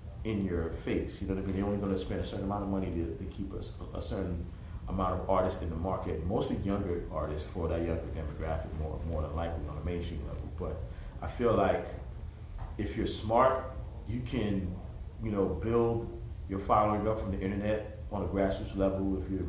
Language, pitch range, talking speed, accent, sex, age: English, 85-100 Hz, 210 wpm, American, male, 30-49